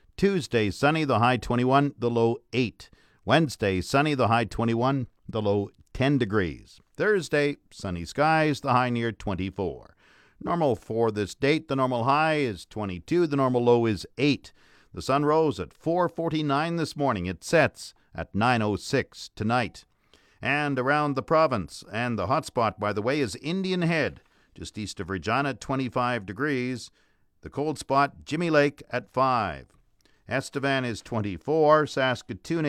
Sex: male